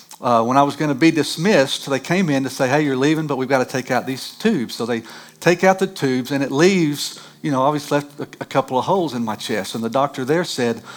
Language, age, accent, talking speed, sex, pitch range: English, 50-69, American, 270 wpm, male, 130-160 Hz